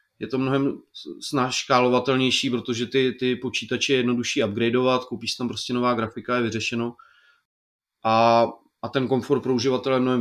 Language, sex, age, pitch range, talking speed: Czech, male, 30-49, 120-135 Hz, 155 wpm